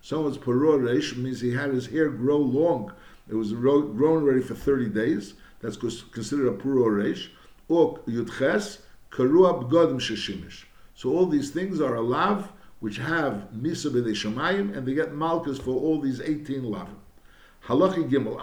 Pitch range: 125-160 Hz